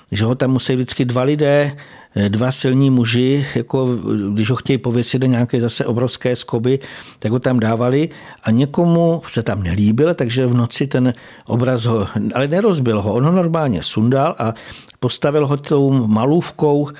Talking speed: 160 wpm